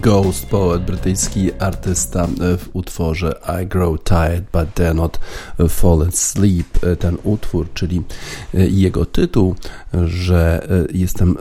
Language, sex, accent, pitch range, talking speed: Polish, male, native, 85-95 Hz, 110 wpm